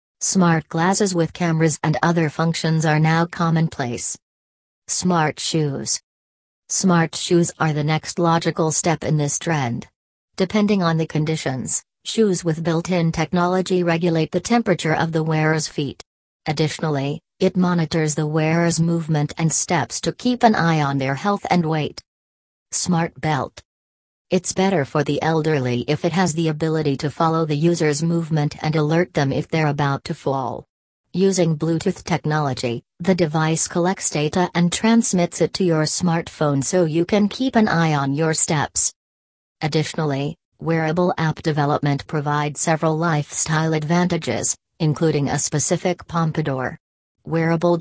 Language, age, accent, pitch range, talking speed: English, 40-59, American, 145-170 Hz, 145 wpm